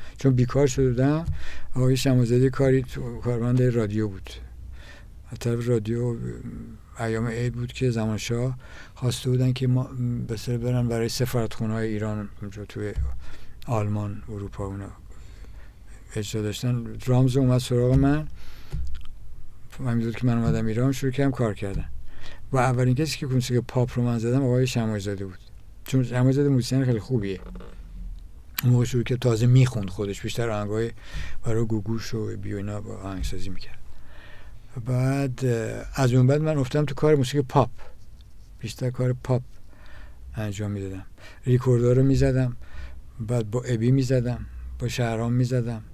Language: Persian